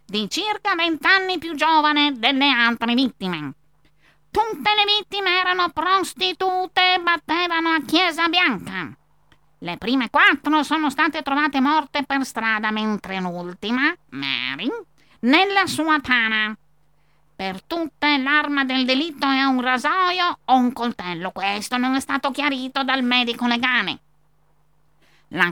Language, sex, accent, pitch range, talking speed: Italian, female, native, 225-320 Hz, 125 wpm